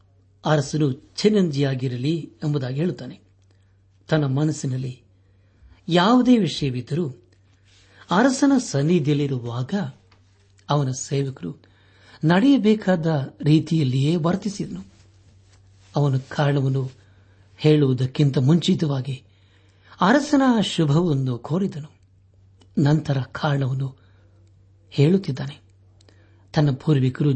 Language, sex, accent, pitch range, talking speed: Kannada, male, native, 95-155 Hz, 60 wpm